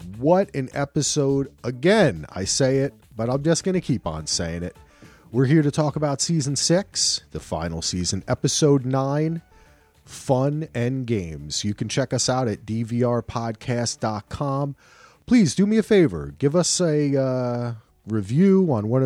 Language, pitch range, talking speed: English, 95-150 Hz, 155 wpm